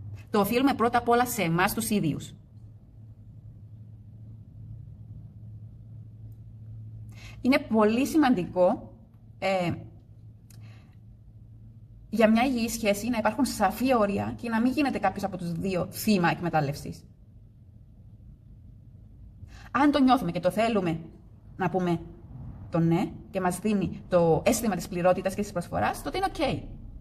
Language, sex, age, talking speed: Greek, female, 30-49, 120 wpm